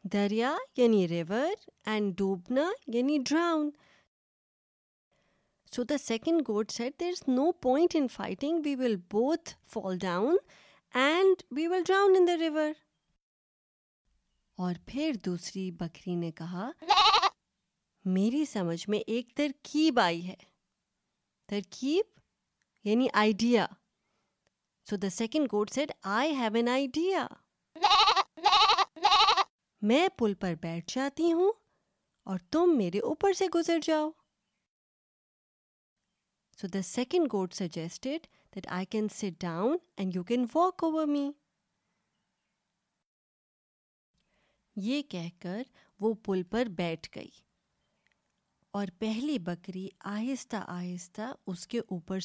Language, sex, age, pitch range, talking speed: Urdu, female, 20-39, 195-310 Hz, 115 wpm